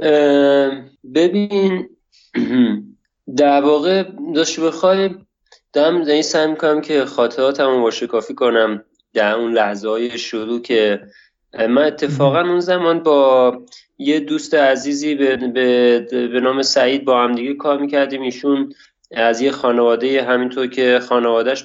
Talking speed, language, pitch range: 130 wpm, Persian, 120-145 Hz